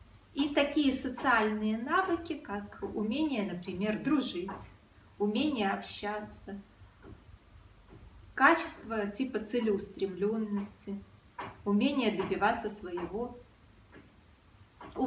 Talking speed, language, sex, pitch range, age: 70 wpm, Russian, female, 195-295 Hz, 30-49